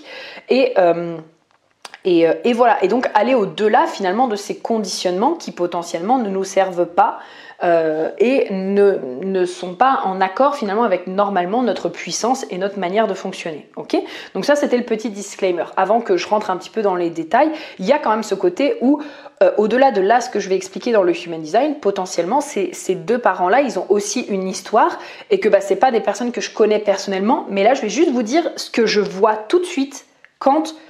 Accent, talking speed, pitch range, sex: French, 215 wpm, 195-275 Hz, female